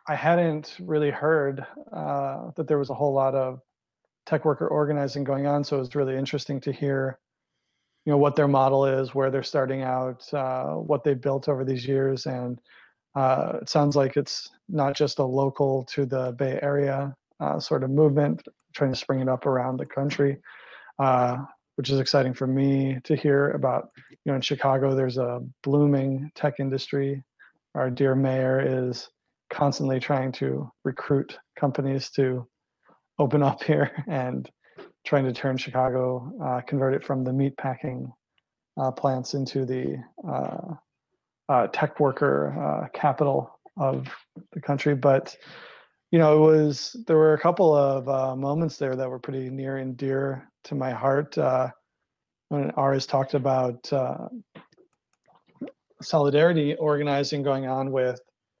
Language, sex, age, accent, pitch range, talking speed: English, male, 30-49, American, 130-145 Hz, 160 wpm